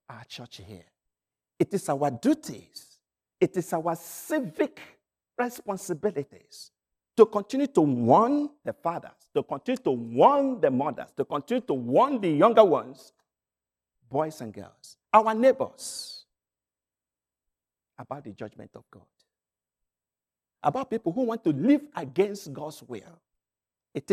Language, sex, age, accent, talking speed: English, male, 50-69, Nigerian, 125 wpm